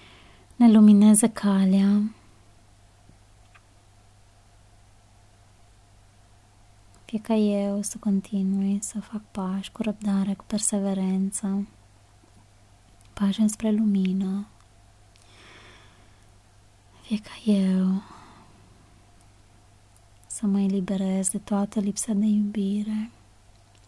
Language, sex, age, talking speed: Romanian, female, 20-39, 75 wpm